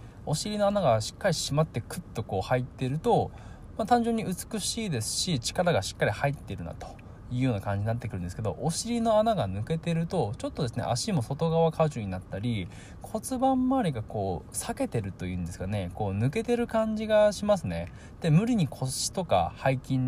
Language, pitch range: Japanese, 100-165 Hz